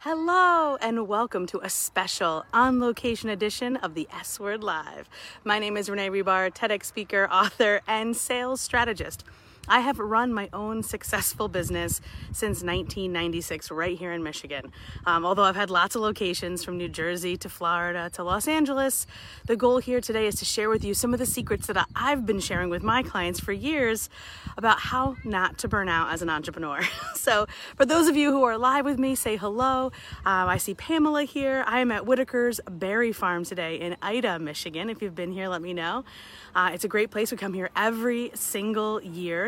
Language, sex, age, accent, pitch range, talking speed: English, female, 30-49, American, 180-245 Hz, 195 wpm